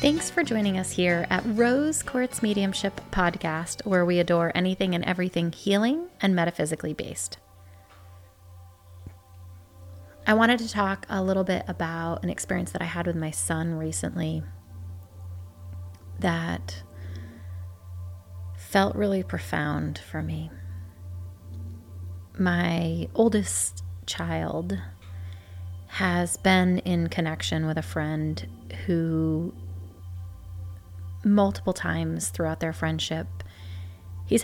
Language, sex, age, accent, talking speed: English, female, 30-49, American, 105 wpm